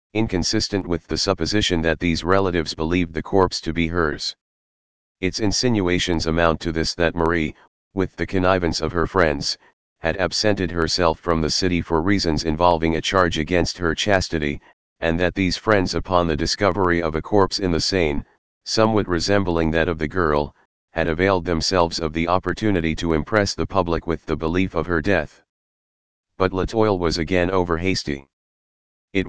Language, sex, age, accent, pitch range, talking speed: English, male, 40-59, American, 80-95 Hz, 170 wpm